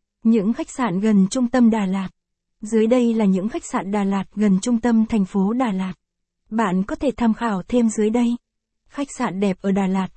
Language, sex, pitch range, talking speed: Vietnamese, female, 200-240 Hz, 220 wpm